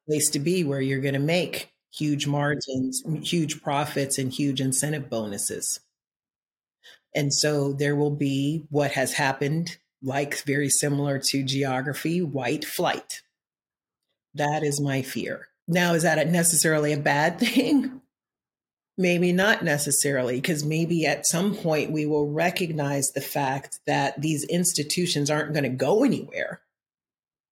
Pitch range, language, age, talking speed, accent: 140-160 Hz, English, 40-59, 135 wpm, American